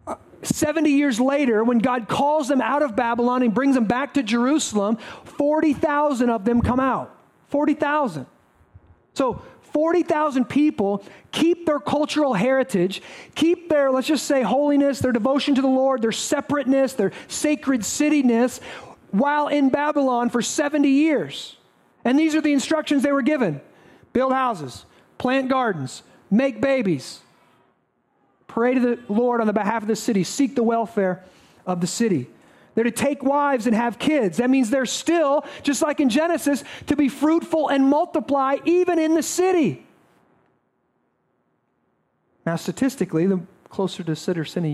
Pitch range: 205-290 Hz